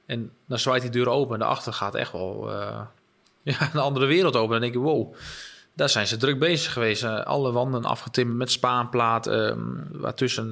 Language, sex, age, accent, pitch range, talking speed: Dutch, male, 20-39, Dutch, 110-130 Hz, 200 wpm